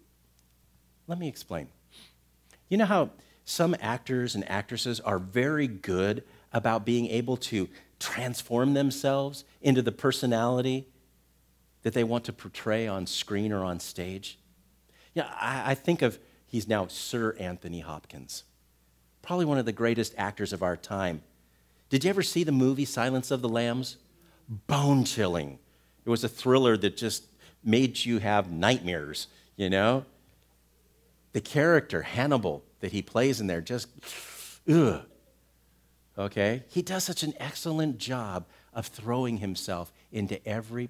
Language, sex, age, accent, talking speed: English, male, 50-69, American, 140 wpm